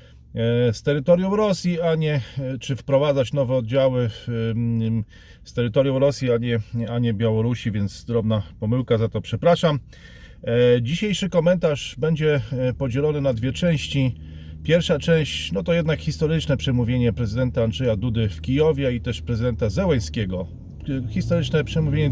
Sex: male